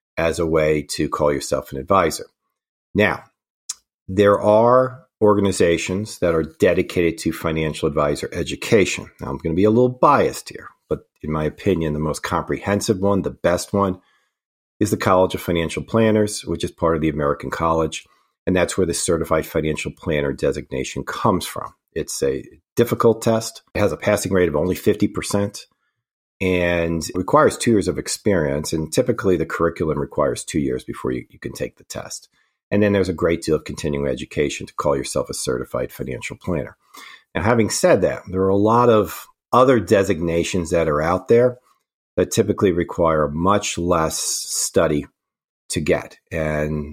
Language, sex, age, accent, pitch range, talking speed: English, male, 40-59, American, 80-100 Hz, 170 wpm